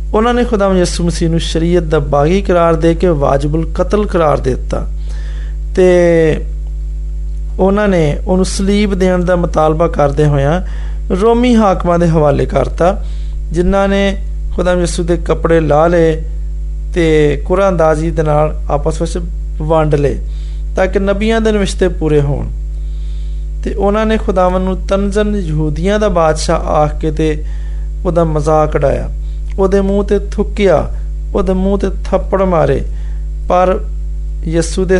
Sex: male